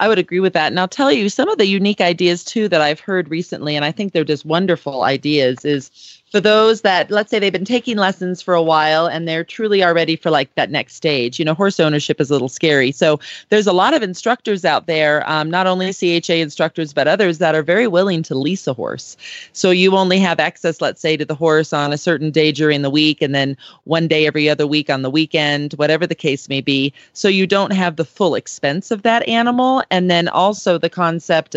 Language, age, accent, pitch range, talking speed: English, 30-49, American, 150-185 Hz, 240 wpm